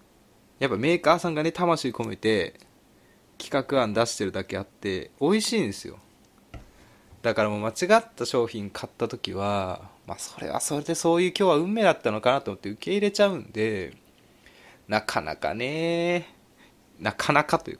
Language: Japanese